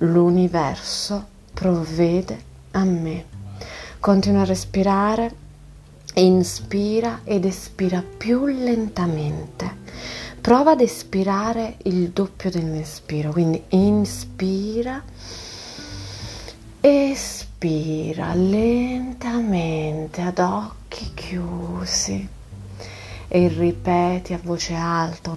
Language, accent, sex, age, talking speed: Italian, native, female, 30-49, 70 wpm